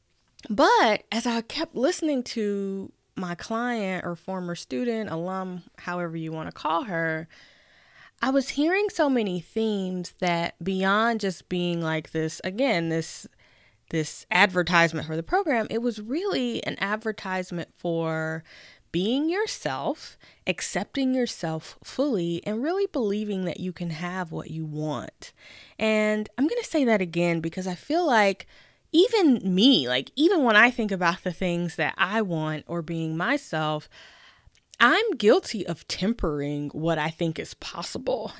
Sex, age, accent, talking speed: female, 10-29, American, 145 wpm